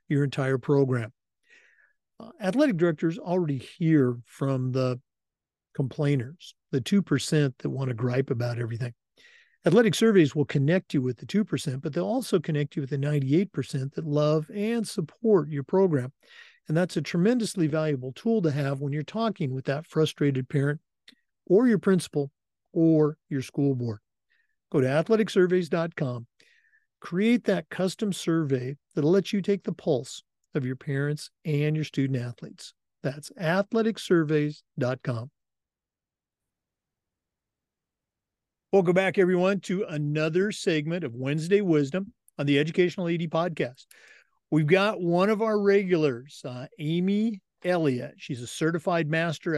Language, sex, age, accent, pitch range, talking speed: English, male, 50-69, American, 140-190 Hz, 135 wpm